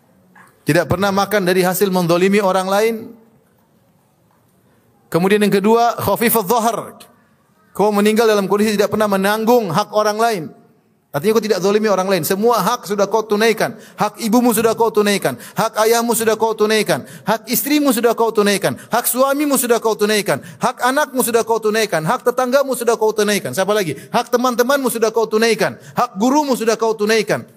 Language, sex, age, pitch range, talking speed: Indonesian, male, 30-49, 195-240 Hz, 165 wpm